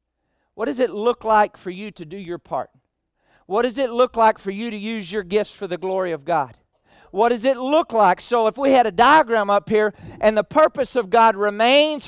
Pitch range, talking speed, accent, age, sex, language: 230-300 Hz, 230 wpm, American, 40-59, male, English